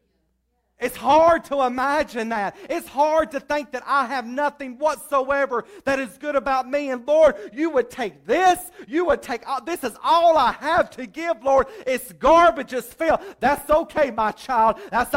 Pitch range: 250-320 Hz